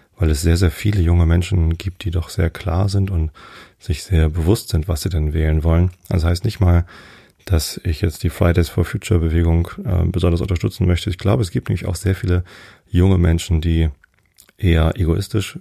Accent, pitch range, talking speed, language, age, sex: German, 80-95 Hz, 200 wpm, German, 30-49, male